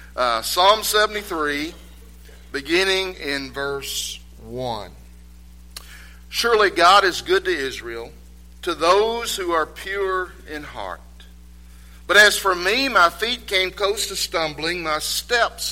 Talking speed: 120 wpm